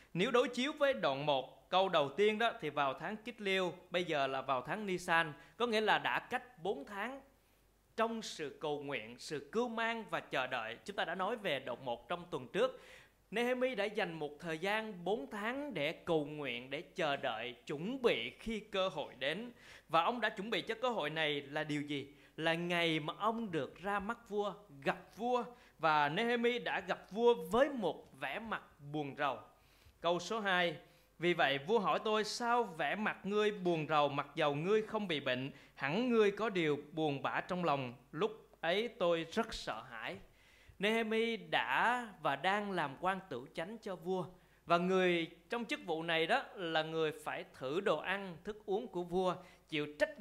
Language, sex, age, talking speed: Vietnamese, male, 20-39, 195 wpm